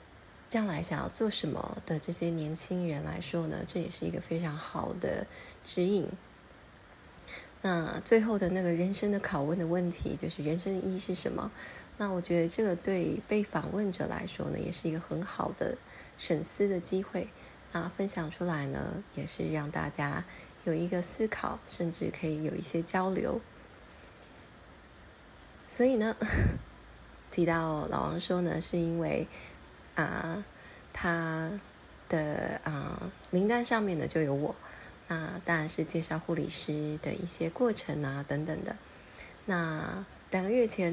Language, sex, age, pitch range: Chinese, female, 20-39, 155-185 Hz